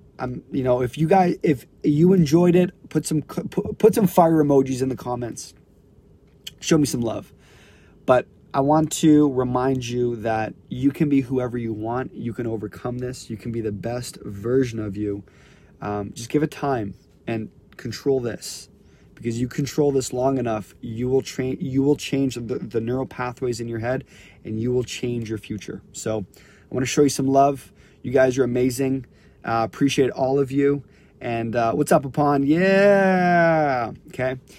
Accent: American